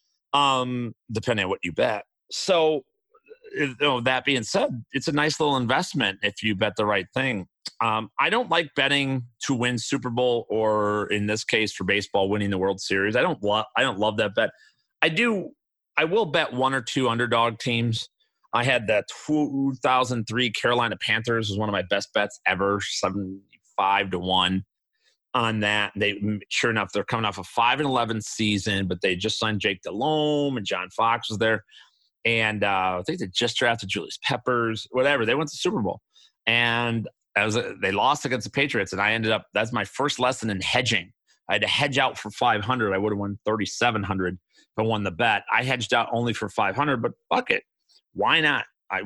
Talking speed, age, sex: 210 wpm, 30-49, male